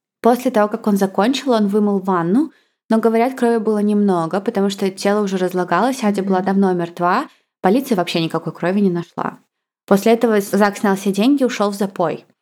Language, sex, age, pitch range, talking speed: Russian, female, 20-39, 190-230 Hz, 185 wpm